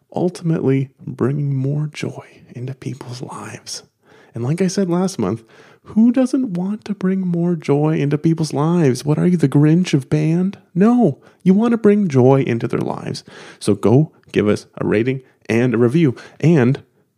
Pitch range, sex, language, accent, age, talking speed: 110-155 Hz, male, English, American, 30-49, 170 wpm